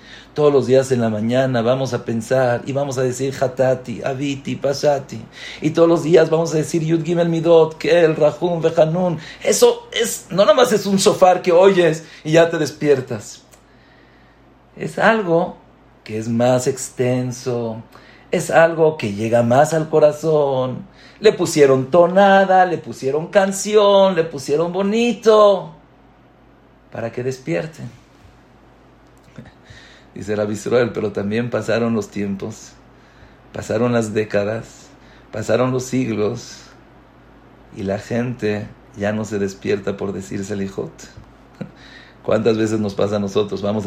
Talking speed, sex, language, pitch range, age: 135 wpm, male, English, 115-165 Hz, 50-69